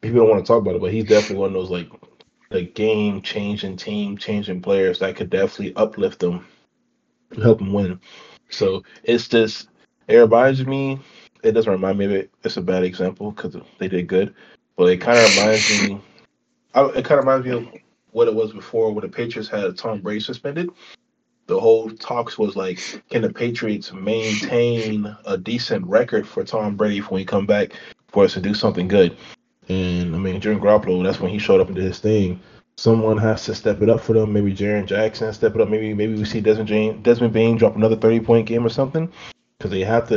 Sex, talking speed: male, 210 wpm